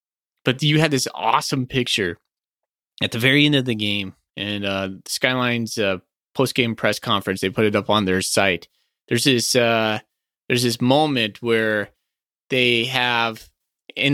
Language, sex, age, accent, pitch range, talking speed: English, male, 20-39, American, 105-135 Hz, 160 wpm